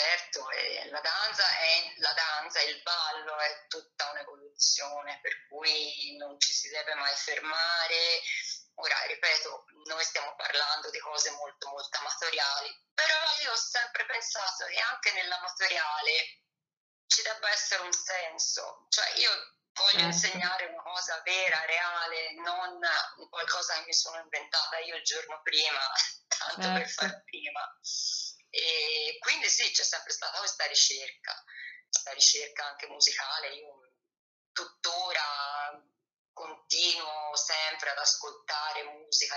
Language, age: Italian, 20-39